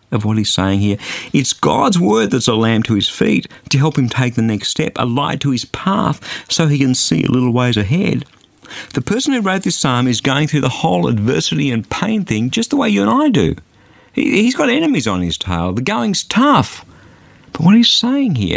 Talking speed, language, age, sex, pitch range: 225 wpm, English, 50-69, male, 105-170 Hz